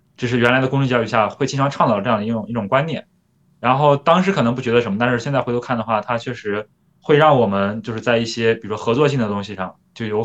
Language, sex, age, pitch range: Chinese, male, 20-39, 115-150 Hz